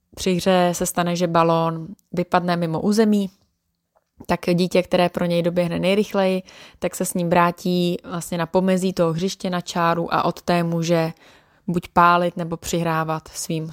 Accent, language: native, Czech